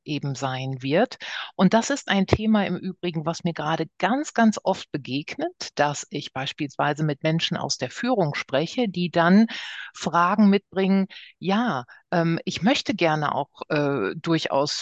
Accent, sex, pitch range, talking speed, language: German, female, 160-205 Hz, 155 wpm, German